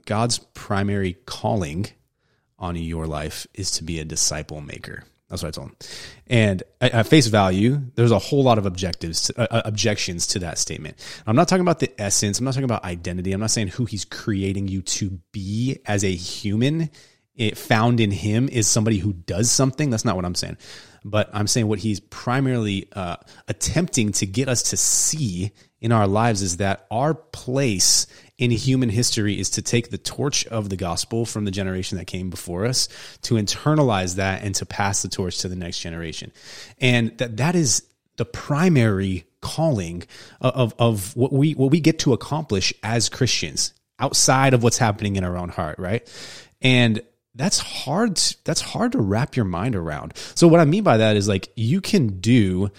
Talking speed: 190 wpm